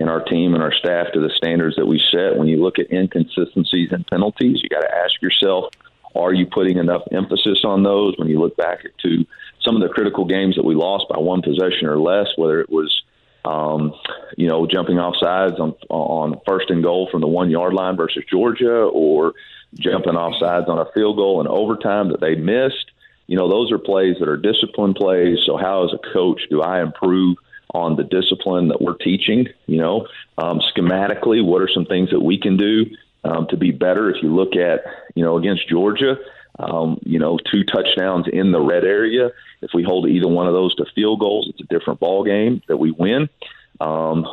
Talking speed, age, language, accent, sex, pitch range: 210 wpm, 40-59, English, American, male, 85-100 Hz